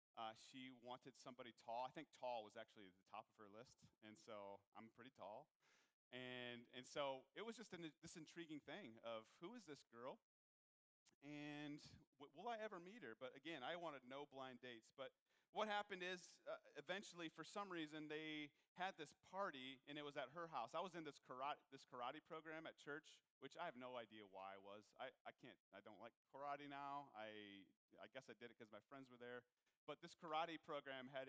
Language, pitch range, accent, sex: English, 120-155 Hz, American, male